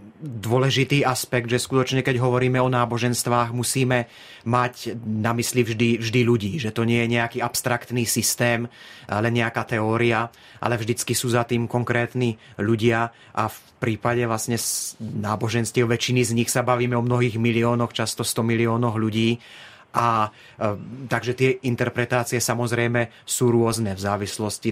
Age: 30-49